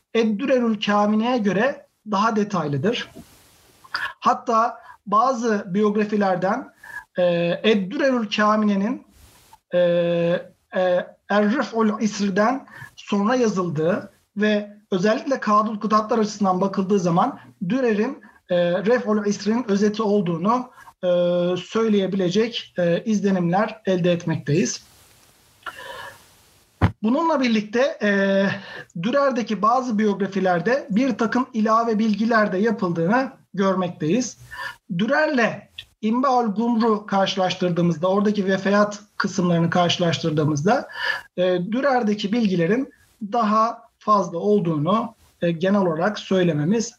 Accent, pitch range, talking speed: native, 180-225 Hz, 85 wpm